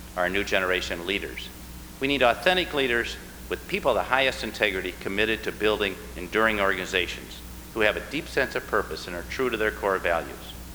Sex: male